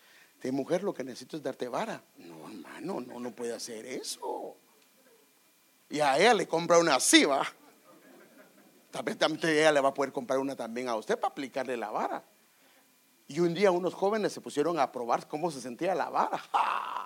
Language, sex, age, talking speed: Spanish, male, 50-69, 195 wpm